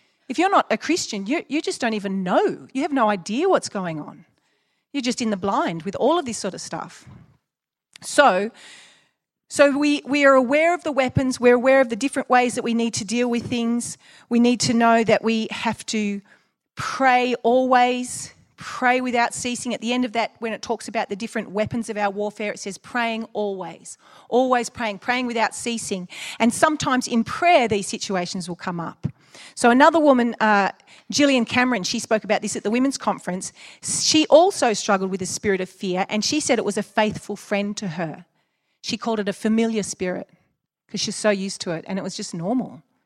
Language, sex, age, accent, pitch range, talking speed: English, female, 40-59, Australian, 200-250 Hz, 205 wpm